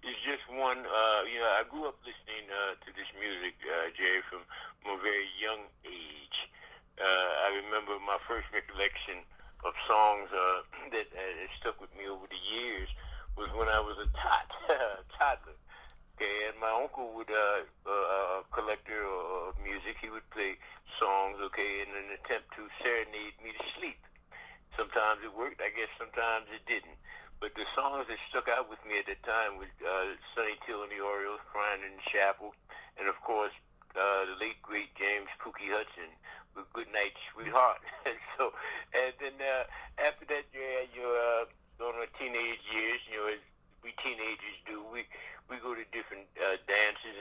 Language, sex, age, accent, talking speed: English, male, 60-79, American, 180 wpm